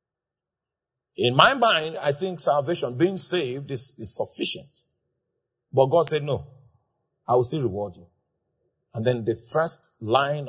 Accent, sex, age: Nigerian, male, 50-69